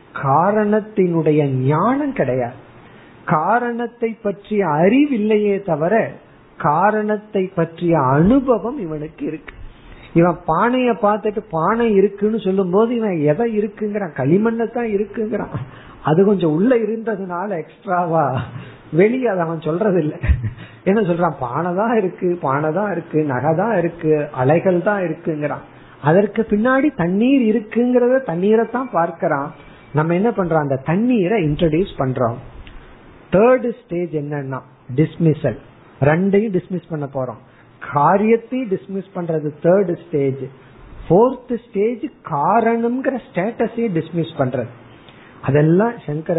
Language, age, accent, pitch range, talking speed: Tamil, 50-69, native, 150-215 Hz, 70 wpm